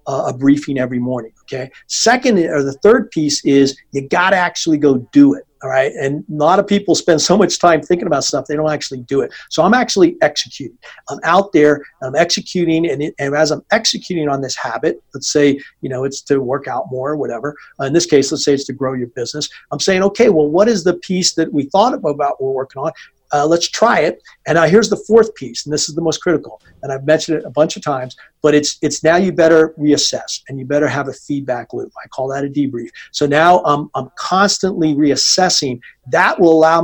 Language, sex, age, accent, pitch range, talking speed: English, male, 50-69, American, 140-175 Hz, 235 wpm